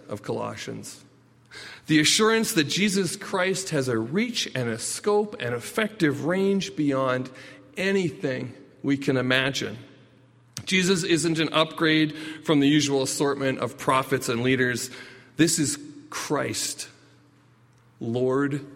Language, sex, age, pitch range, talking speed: English, male, 40-59, 125-160 Hz, 120 wpm